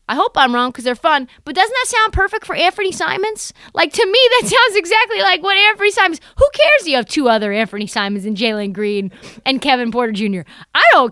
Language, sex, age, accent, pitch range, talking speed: English, female, 30-49, American, 220-330 Hz, 230 wpm